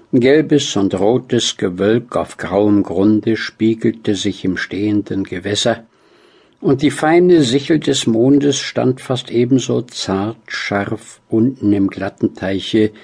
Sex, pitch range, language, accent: male, 100-120 Hz, German, German